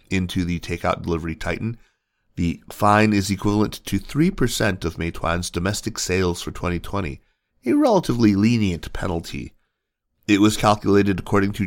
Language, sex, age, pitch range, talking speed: English, male, 30-49, 85-105 Hz, 135 wpm